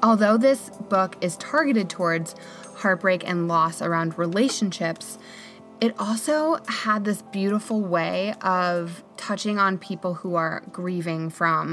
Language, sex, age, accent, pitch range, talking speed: English, female, 20-39, American, 170-200 Hz, 130 wpm